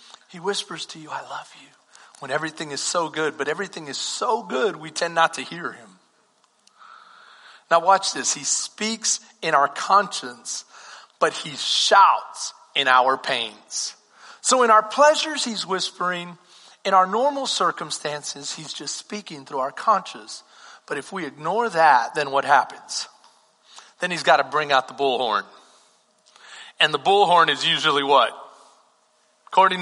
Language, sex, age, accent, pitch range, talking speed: English, male, 40-59, American, 185-255 Hz, 155 wpm